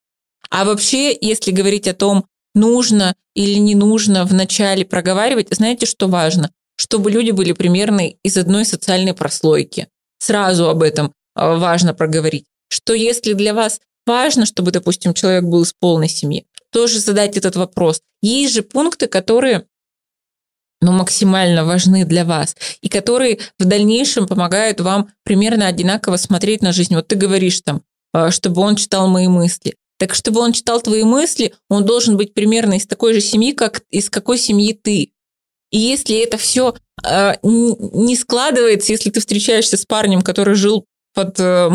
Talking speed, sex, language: 155 wpm, female, Russian